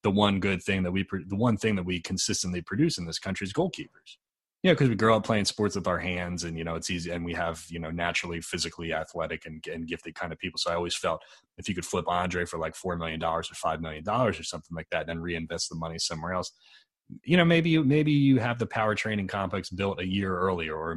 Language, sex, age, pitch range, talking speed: English, male, 30-49, 85-105 Hz, 265 wpm